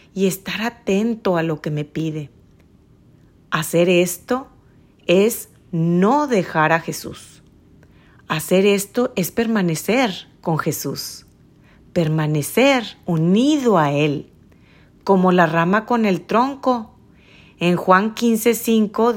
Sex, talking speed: female, 105 wpm